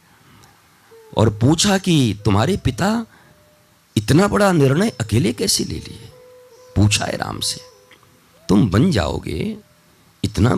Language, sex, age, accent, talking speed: Hindi, male, 50-69, native, 115 wpm